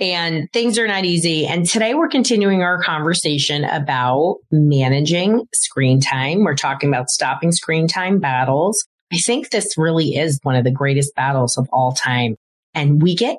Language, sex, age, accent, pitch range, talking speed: English, female, 30-49, American, 140-185 Hz, 170 wpm